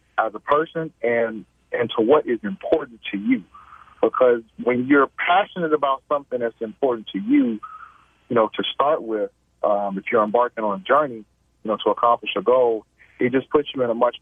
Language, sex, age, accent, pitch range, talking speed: English, male, 40-59, American, 110-155 Hz, 195 wpm